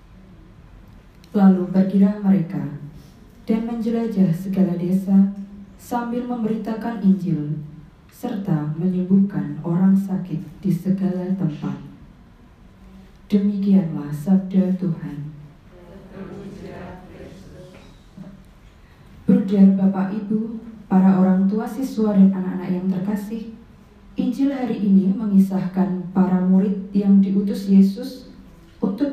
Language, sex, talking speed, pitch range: Indonesian, female, 85 wpm, 185-210 Hz